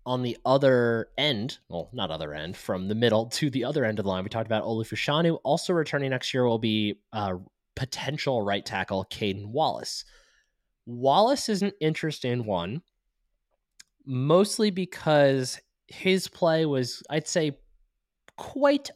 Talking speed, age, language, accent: 150 wpm, 20-39, English, American